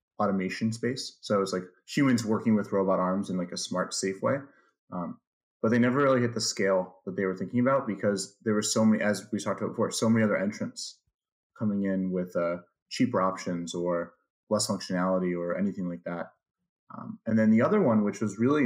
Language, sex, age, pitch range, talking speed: English, male, 30-49, 95-120 Hz, 210 wpm